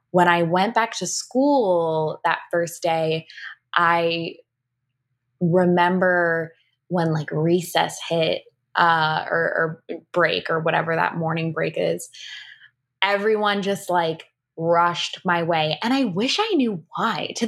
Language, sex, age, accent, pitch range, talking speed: English, female, 20-39, American, 160-185 Hz, 130 wpm